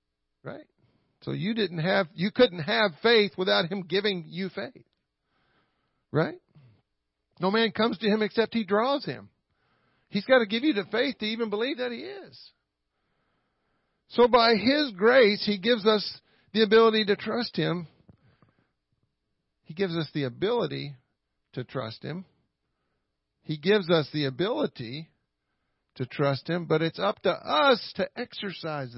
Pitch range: 160-225 Hz